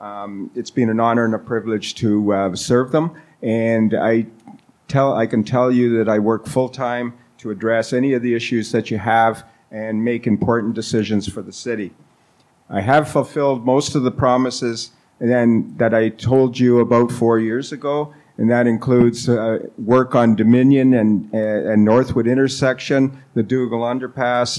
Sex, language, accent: male, English, American